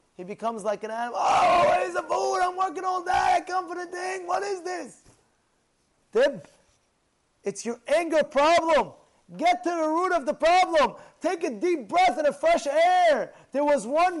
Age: 30-49